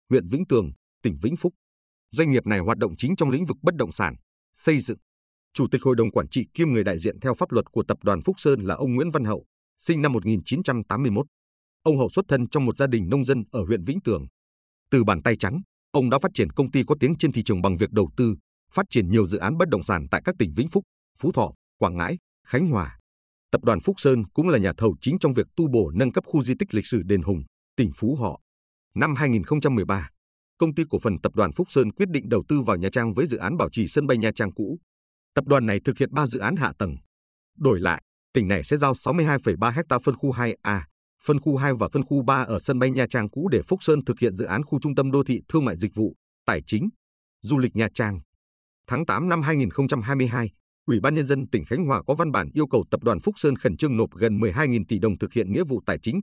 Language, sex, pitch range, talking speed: Vietnamese, male, 105-140 Hz, 255 wpm